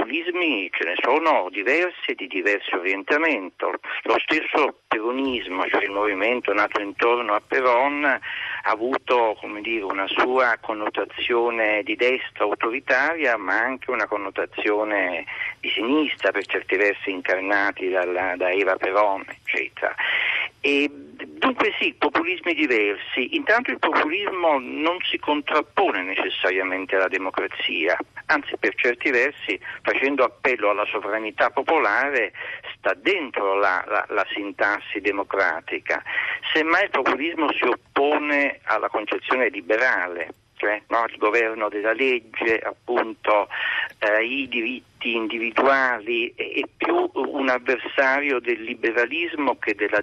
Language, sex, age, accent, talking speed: Italian, male, 50-69, native, 120 wpm